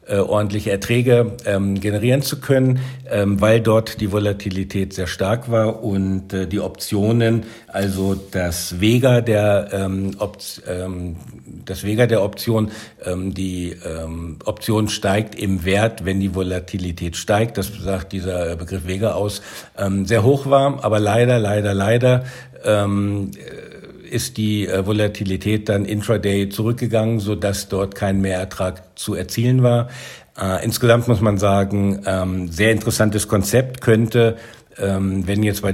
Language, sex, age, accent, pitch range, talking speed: German, male, 60-79, German, 95-110 Hz, 140 wpm